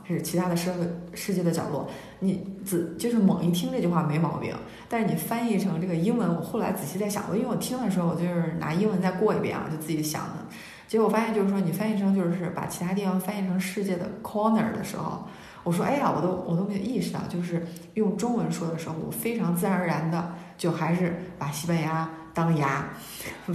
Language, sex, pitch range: Chinese, female, 165-200 Hz